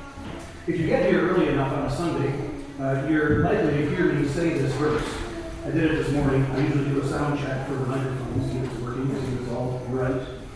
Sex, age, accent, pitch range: male, 40-59, American, 130-160 Hz